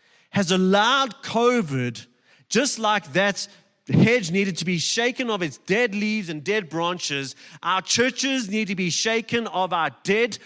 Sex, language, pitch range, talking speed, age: male, English, 160-225 Hz, 155 wpm, 30-49